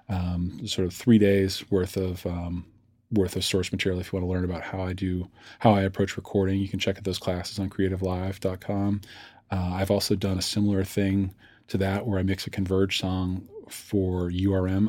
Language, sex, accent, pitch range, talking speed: English, male, American, 95-110 Hz, 200 wpm